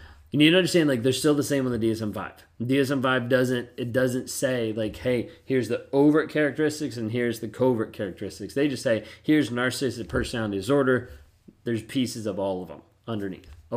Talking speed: 175 wpm